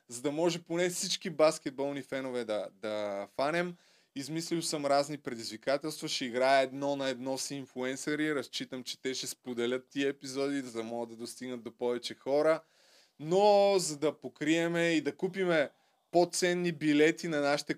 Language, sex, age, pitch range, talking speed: Bulgarian, male, 20-39, 135-170 Hz, 160 wpm